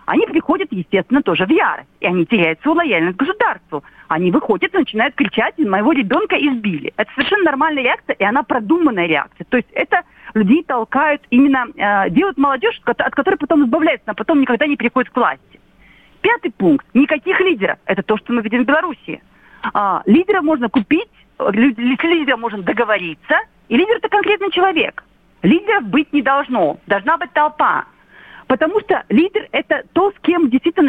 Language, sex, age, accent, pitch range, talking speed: Russian, female, 40-59, native, 220-315 Hz, 165 wpm